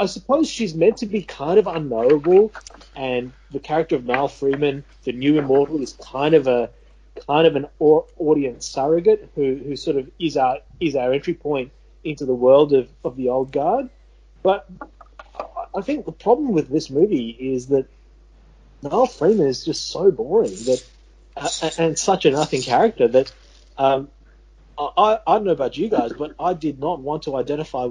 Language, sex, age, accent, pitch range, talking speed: English, male, 30-49, Australian, 130-170 Hz, 180 wpm